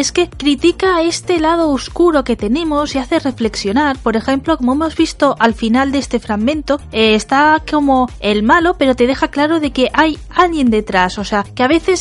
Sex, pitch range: female, 240-315 Hz